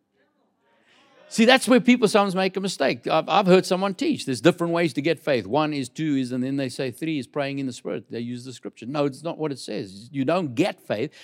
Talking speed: 250 wpm